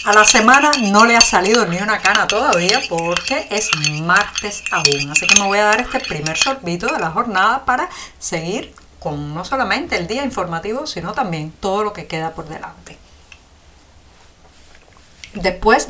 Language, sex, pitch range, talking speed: Spanish, female, 165-235 Hz, 165 wpm